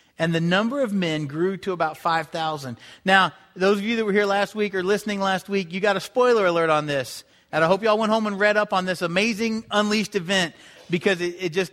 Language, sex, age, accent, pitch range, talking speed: English, male, 40-59, American, 160-195 Hz, 245 wpm